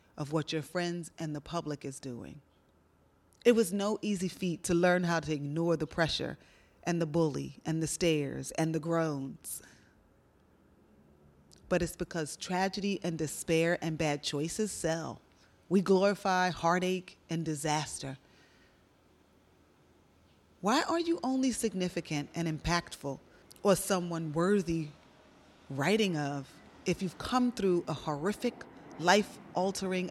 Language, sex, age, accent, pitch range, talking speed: English, female, 30-49, American, 155-195 Hz, 130 wpm